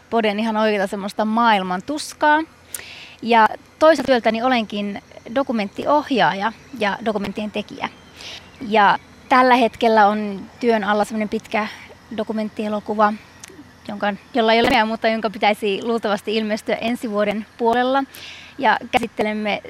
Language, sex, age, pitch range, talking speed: Finnish, female, 20-39, 210-245 Hz, 110 wpm